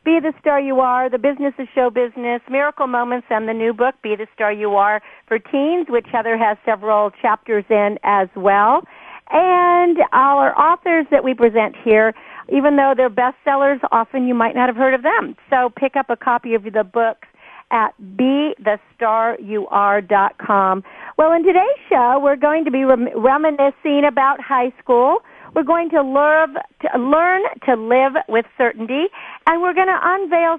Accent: American